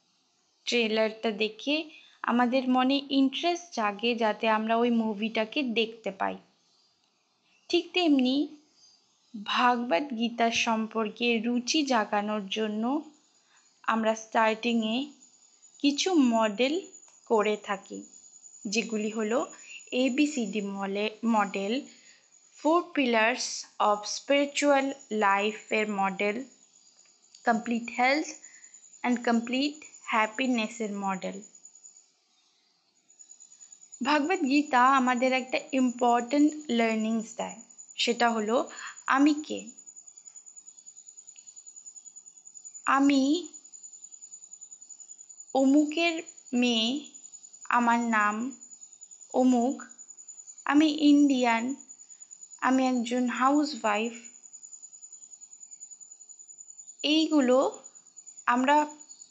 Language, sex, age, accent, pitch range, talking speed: Bengali, female, 20-39, native, 225-285 Hz, 55 wpm